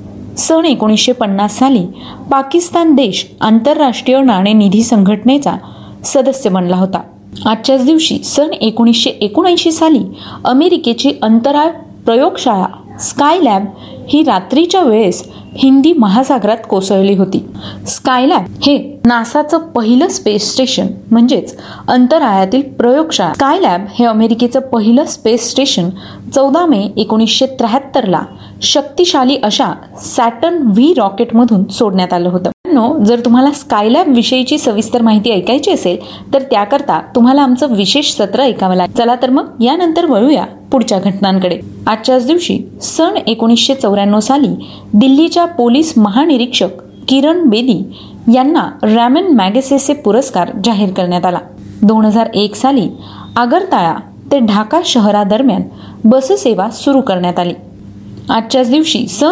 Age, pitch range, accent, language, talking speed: 30-49, 215-280 Hz, native, Marathi, 85 wpm